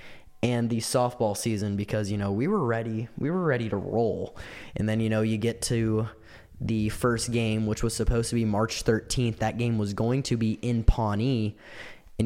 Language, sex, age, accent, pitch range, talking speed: English, male, 10-29, American, 105-120 Hz, 200 wpm